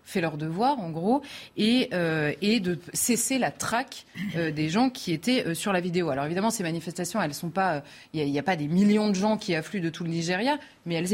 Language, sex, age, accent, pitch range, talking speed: French, female, 30-49, French, 165-210 Hz, 250 wpm